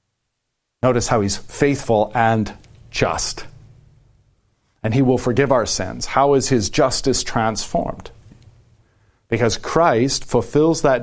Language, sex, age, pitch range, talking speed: English, male, 40-59, 100-125 Hz, 115 wpm